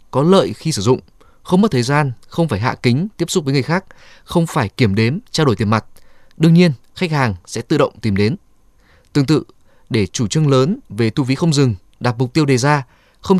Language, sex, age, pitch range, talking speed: Vietnamese, male, 20-39, 110-155 Hz, 235 wpm